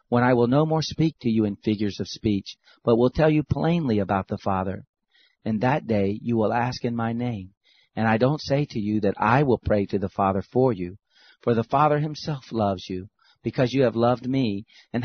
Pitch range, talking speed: 105-130 Hz, 225 wpm